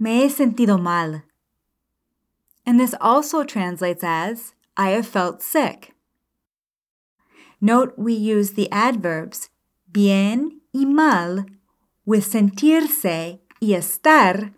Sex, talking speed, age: female, 105 wpm, 30-49